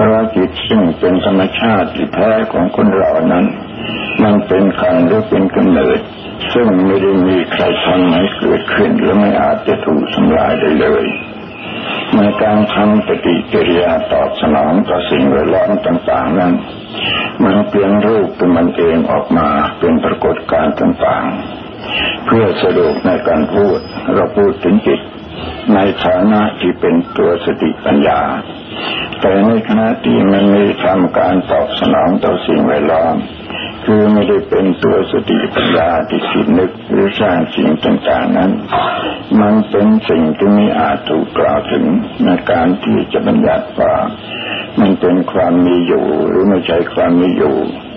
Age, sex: 60-79, male